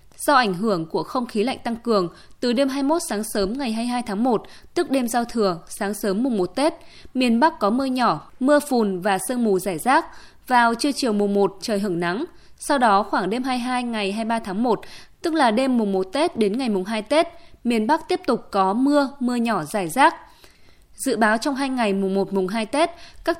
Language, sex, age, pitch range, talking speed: Vietnamese, female, 20-39, 205-275 Hz, 230 wpm